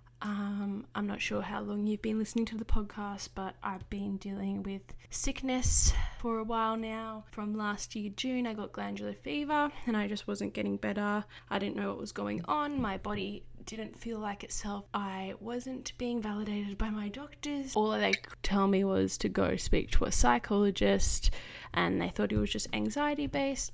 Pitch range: 200-230 Hz